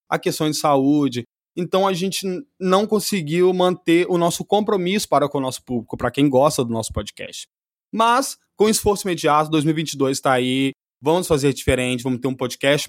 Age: 20-39